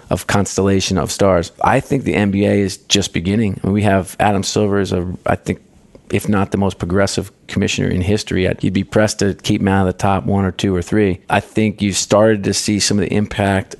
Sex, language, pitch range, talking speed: male, English, 95-110 Hz, 235 wpm